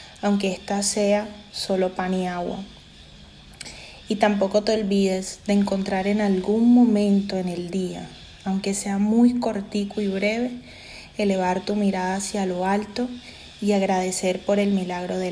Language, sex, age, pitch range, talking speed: Spanish, female, 20-39, 185-210 Hz, 145 wpm